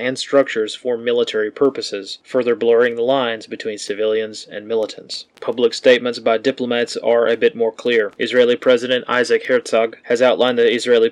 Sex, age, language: male, 20-39, English